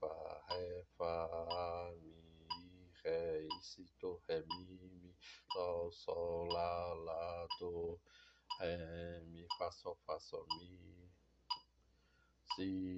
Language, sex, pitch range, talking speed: Portuguese, male, 85-90 Hz, 95 wpm